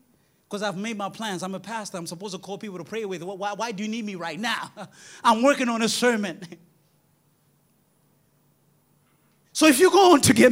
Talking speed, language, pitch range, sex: 205 wpm, English, 210-300 Hz, male